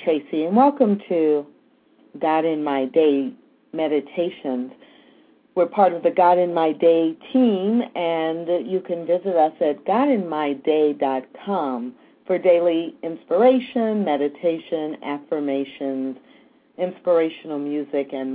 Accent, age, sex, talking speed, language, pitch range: American, 50-69, female, 110 wpm, English, 155-225 Hz